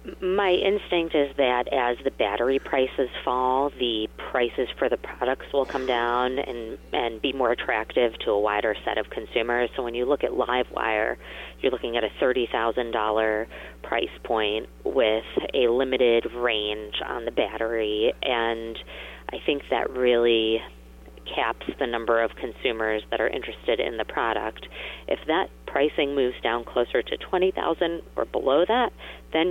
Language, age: English, 30-49